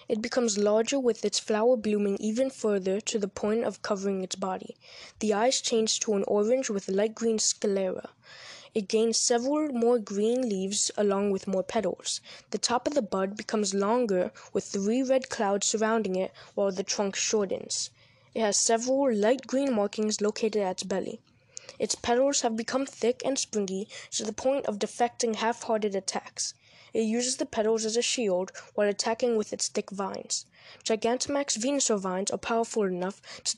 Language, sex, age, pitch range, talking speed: English, female, 10-29, 205-240 Hz, 175 wpm